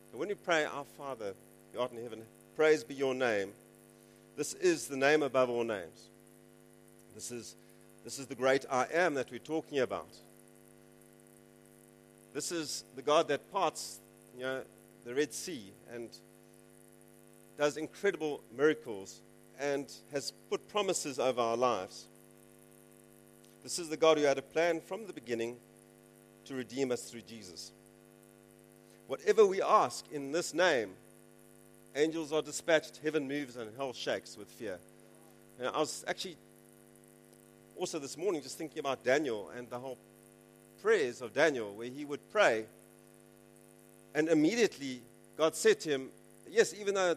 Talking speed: 150 wpm